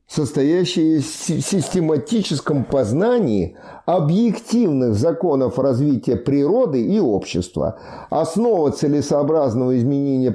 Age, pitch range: 50-69, 125-195 Hz